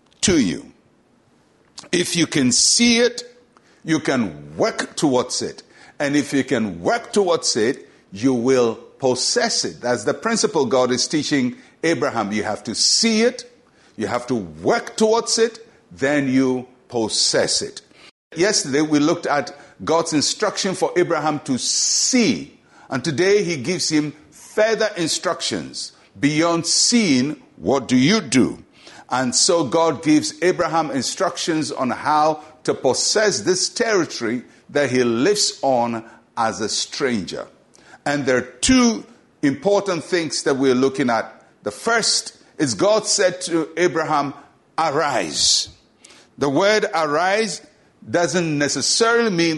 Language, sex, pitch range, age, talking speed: English, male, 140-215 Hz, 60-79, 135 wpm